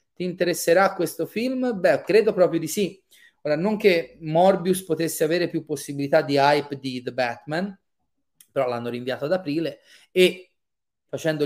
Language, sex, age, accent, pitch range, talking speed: Italian, male, 30-49, native, 130-180 Hz, 150 wpm